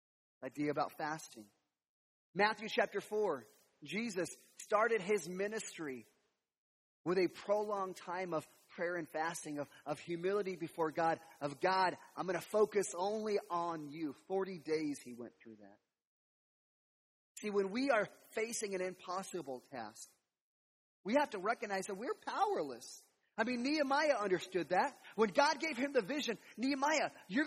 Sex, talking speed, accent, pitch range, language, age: male, 145 wpm, American, 180-280 Hz, English, 30-49